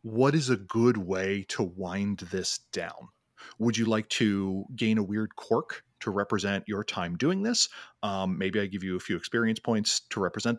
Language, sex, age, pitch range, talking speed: English, male, 30-49, 95-125 Hz, 195 wpm